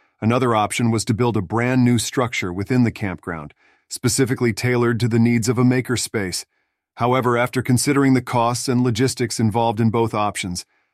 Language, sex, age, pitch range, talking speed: English, male, 40-59, 110-125 Hz, 170 wpm